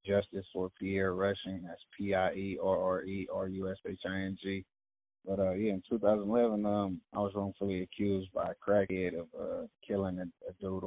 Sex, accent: male, American